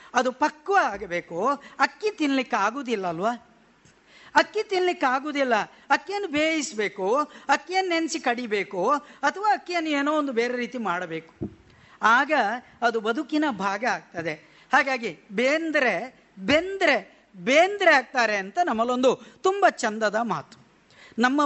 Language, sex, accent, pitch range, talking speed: Kannada, female, native, 225-300 Hz, 105 wpm